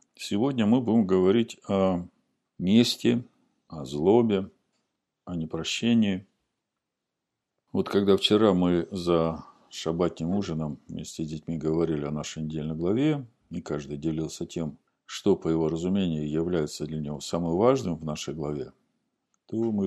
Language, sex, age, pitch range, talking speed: Russian, male, 50-69, 80-100 Hz, 130 wpm